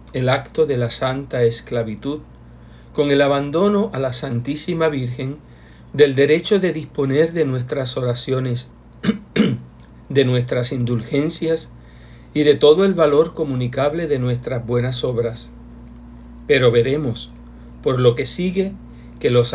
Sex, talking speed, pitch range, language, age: male, 125 wpm, 110-150 Hz, Spanish, 50-69